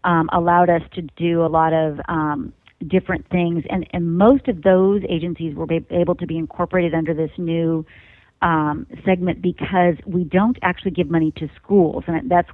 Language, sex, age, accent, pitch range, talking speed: English, female, 40-59, American, 160-180 Hz, 185 wpm